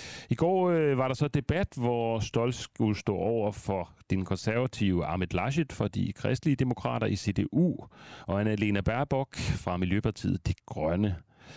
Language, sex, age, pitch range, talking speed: Danish, male, 40-59, 95-130 Hz, 160 wpm